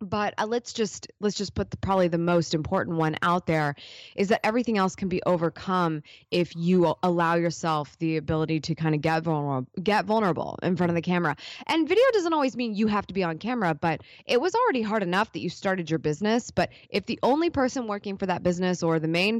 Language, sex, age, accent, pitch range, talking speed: English, female, 20-39, American, 165-210 Hz, 230 wpm